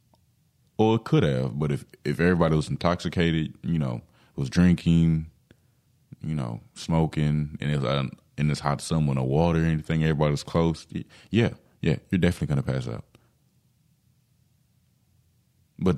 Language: English